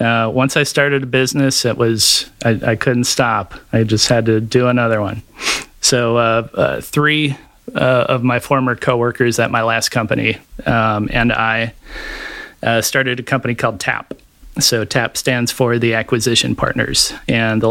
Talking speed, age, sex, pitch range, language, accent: 170 wpm, 30-49, male, 105-125 Hz, English, American